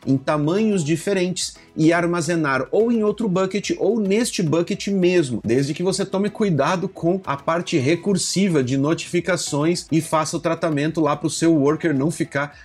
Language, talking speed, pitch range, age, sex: Portuguese, 165 wpm, 140-185 Hz, 30-49, male